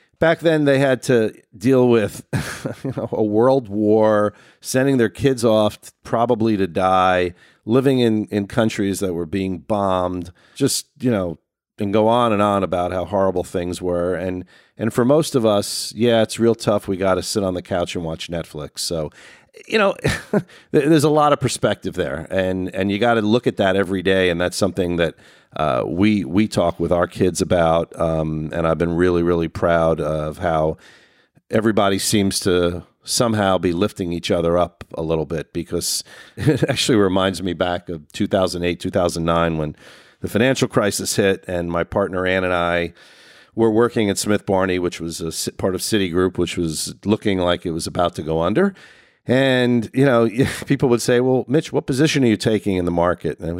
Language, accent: English, American